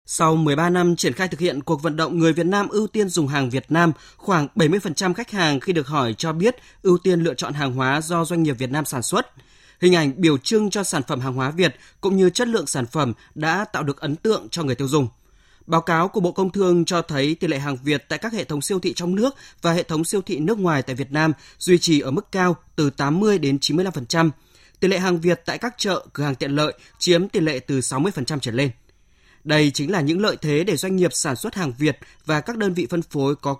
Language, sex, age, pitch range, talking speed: Vietnamese, male, 20-39, 140-180 Hz, 255 wpm